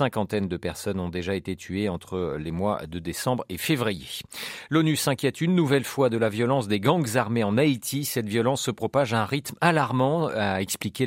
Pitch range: 100-145 Hz